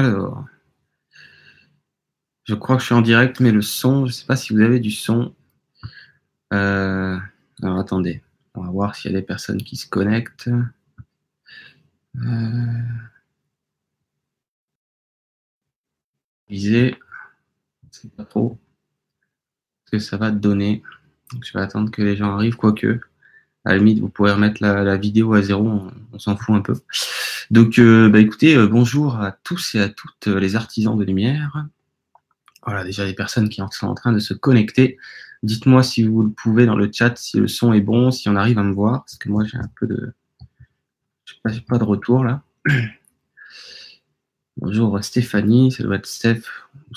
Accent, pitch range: French, 100-120 Hz